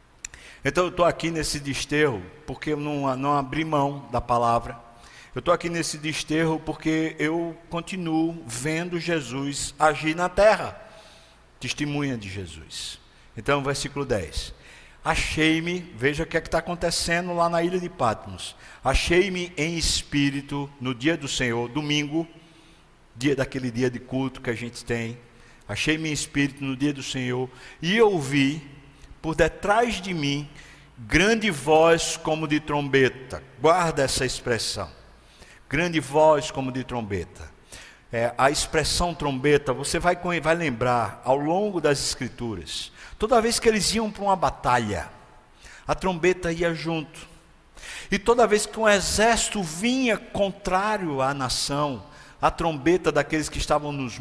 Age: 60-79